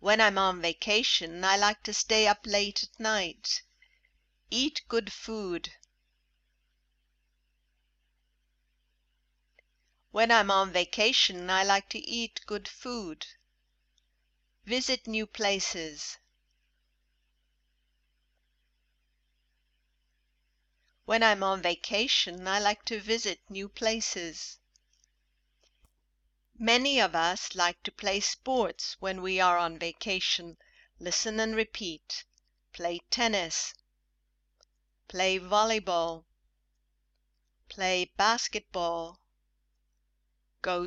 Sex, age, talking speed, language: female, 60-79, 90 wpm, English